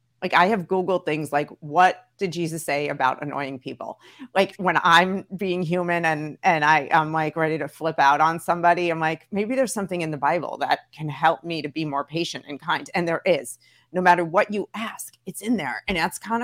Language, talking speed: English, 225 wpm